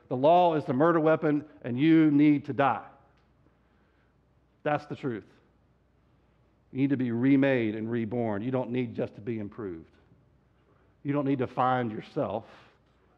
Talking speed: 160 wpm